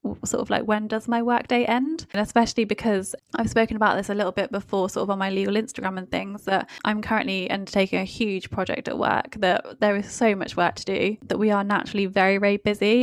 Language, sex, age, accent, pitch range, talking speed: English, female, 10-29, British, 195-220 Hz, 240 wpm